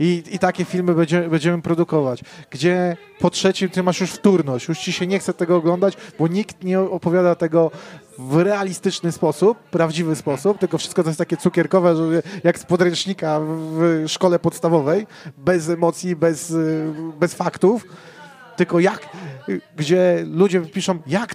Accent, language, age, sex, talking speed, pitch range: native, Polish, 30-49, male, 155 wpm, 160-185 Hz